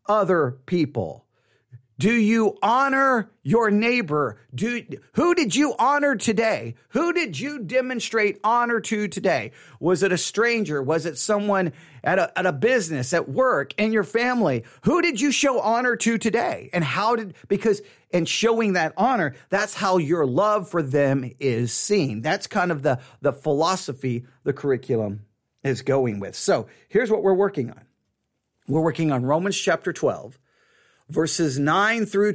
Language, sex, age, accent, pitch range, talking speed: English, male, 40-59, American, 145-230 Hz, 160 wpm